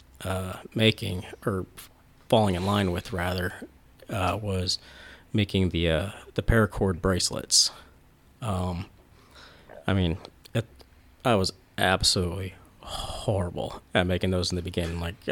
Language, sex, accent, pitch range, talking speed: English, male, American, 90-105 Hz, 120 wpm